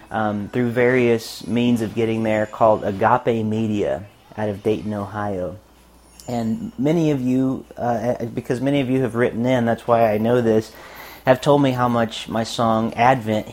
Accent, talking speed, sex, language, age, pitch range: American, 175 wpm, male, English, 30-49, 110-125 Hz